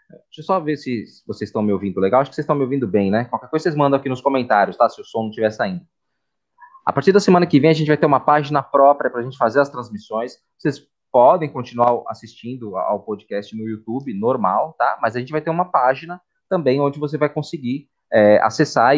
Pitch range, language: 125-180 Hz, Portuguese